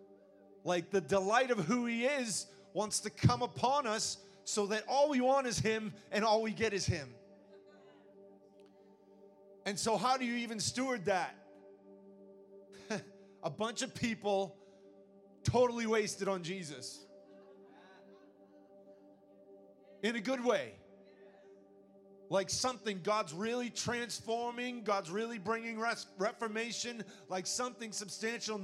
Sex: male